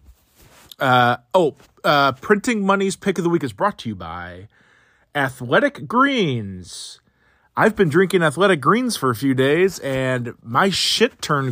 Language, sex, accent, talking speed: English, male, American, 150 wpm